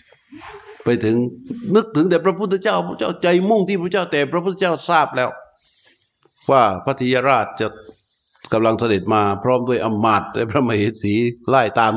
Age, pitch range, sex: 60-79, 120-160 Hz, male